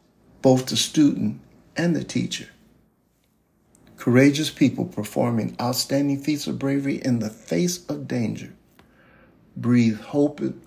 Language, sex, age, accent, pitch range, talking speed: English, male, 50-69, American, 115-155 Hz, 110 wpm